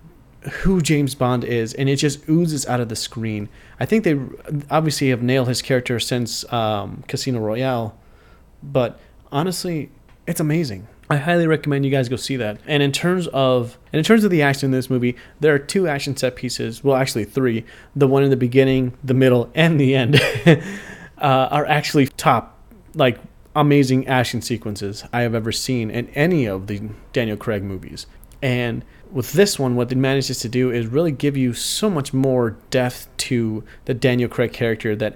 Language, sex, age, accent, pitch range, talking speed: English, male, 30-49, American, 115-140 Hz, 190 wpm